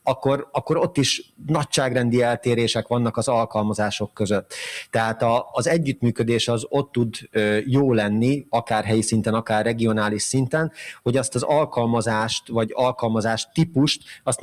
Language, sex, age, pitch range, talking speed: Hungarian, male, 30-49, 110-130 Hz, 140 wpm